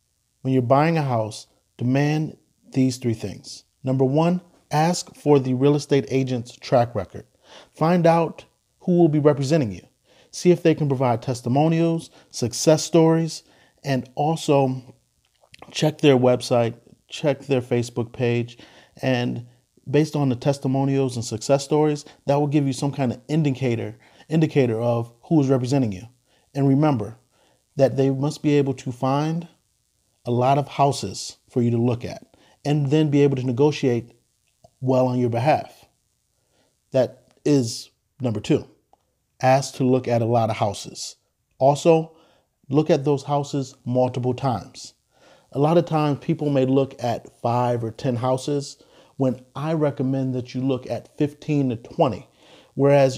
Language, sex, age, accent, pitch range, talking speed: English, male, 40-59, American, 120-150 Hz, 150 wpm